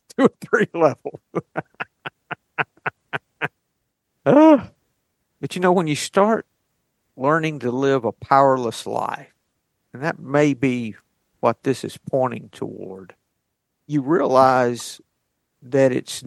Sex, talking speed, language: male, 100 wpm, English